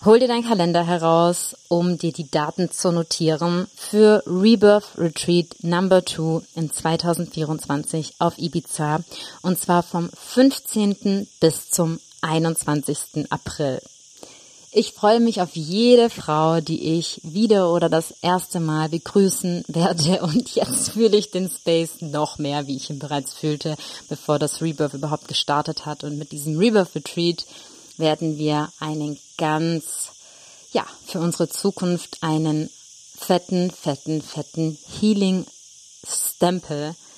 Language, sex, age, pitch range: English, female, 30-49, 155-180 Hz